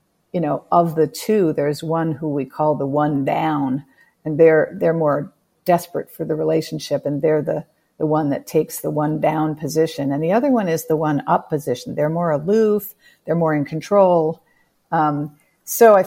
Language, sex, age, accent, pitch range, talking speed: English, female, 50-69, American, 150-180 Hz, 190 wpm